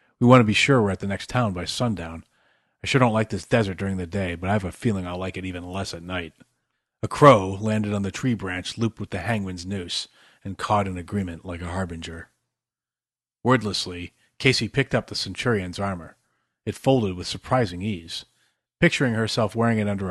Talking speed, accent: 205 wpm, American